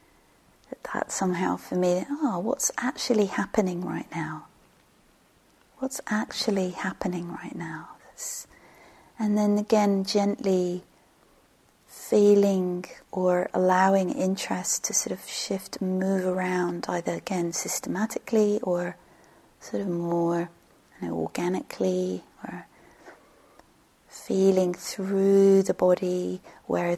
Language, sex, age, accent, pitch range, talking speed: English, female, 40-59, British, 175-200 Hz, 100 wpm